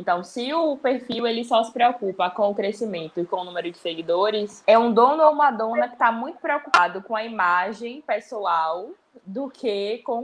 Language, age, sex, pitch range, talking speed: Portuguese, 20-39, female, 200-260 Hz, 200 wpm